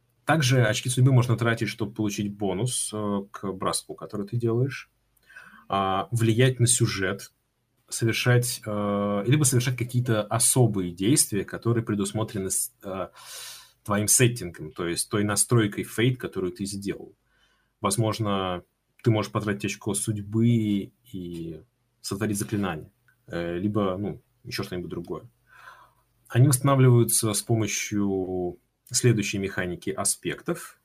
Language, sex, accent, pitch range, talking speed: Russian, male, native, 100-120 Hz, 105 wpm